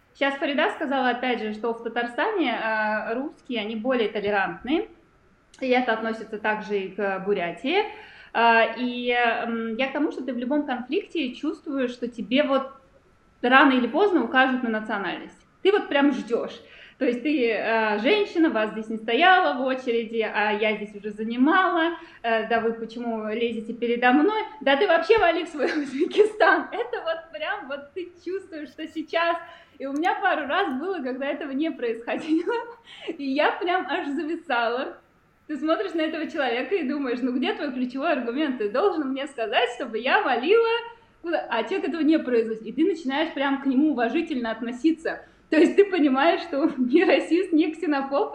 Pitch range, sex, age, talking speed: 230-330 Hz, female, 20-39, 170 wpm